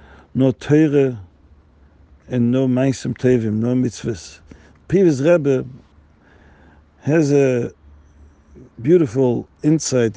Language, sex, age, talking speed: English, male, 50-69, 85 wpm